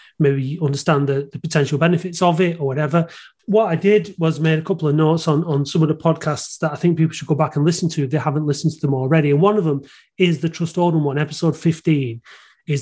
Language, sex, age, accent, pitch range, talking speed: English, male, 30-49, British, 145-175 Hz, 255 wpm